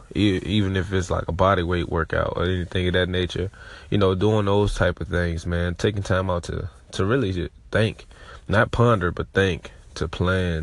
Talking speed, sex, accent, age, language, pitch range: 190 wpm, male, American, 20-39, English, 85-95 Hz